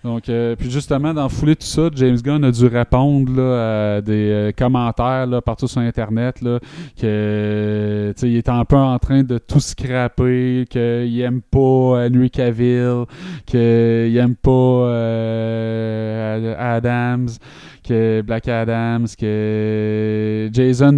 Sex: male